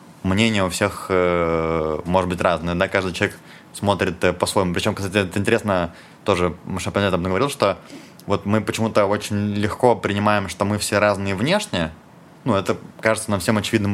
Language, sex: Russian, male